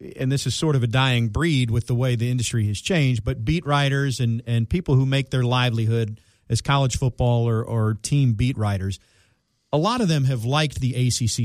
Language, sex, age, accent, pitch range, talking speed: English, male, 40-59, American, 115-140 Hz, 215 wpm